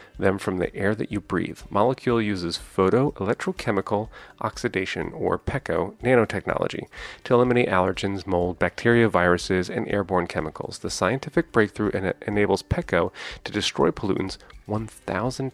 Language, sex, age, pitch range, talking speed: English, male, 30-49, 95-125 Hz, 130 wpm